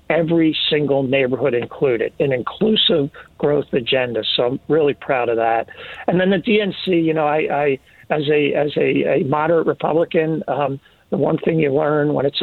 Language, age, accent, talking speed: English, 50-69, American, 180 wpm